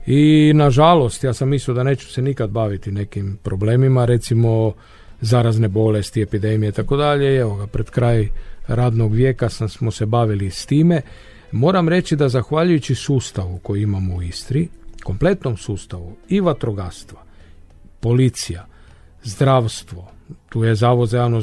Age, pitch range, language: 50-69, 105-135 Hz, Croatian